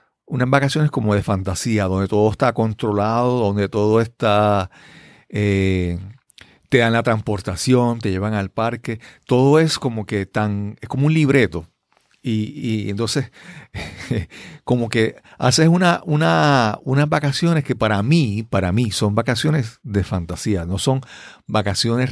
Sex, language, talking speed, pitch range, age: male, Spanish, 140 wpm, 105-135 Hz, 50-69